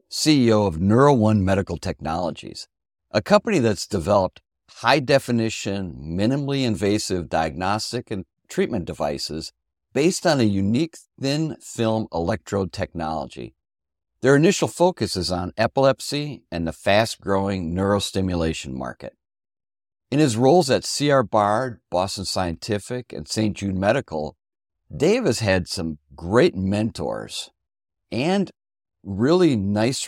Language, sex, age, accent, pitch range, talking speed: English, male, 60-79, American, 90-135 Hz, 115 wpm